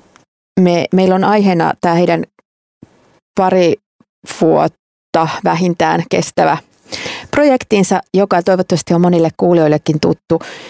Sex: female